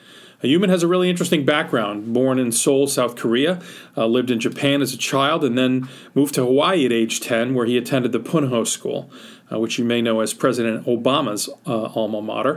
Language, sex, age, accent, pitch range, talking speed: English, male, 40-59, American, 115-145 Hz, 210 wpm